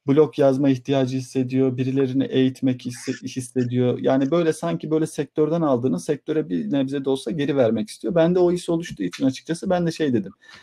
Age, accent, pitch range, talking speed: 50-69, native, 125-145 Hz, 185 wpm